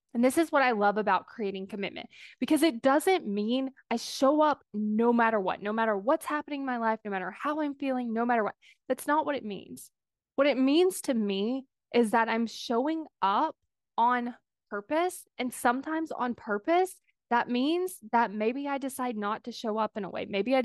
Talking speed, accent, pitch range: 205 wpm, American, 215-275 Hz